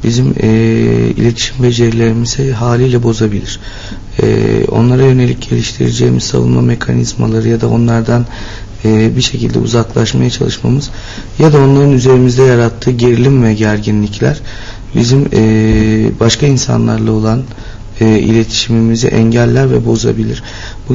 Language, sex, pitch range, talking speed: Turkish, male, 105-130 Hz, 110 wpm